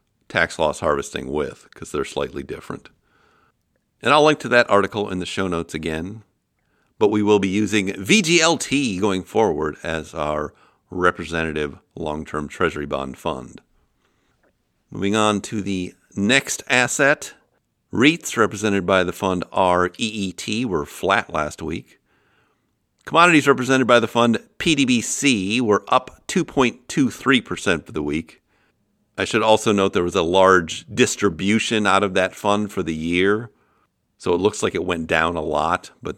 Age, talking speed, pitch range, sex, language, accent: 50-69, 145 wpm, 90-115 Hz, male, English, American